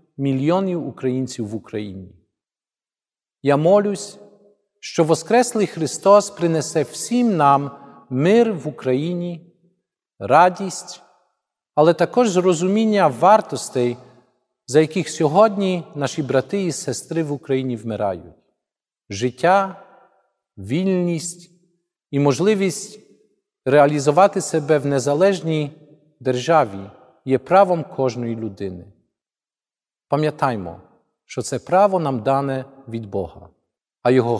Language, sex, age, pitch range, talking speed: Ukrainian, male, 40-59, 125-185 Hz, 90 wpm